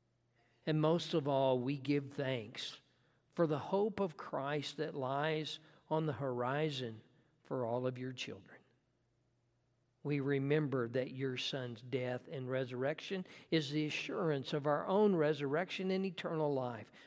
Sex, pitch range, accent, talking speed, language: male, 120-150 Hz, American, 140 wpm, English